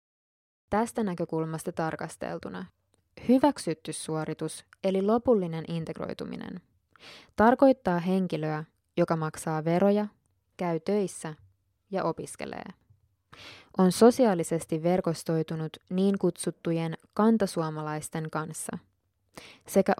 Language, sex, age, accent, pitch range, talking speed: Finnish, female, 20-39, native, 155-200 Hz, 75 wpm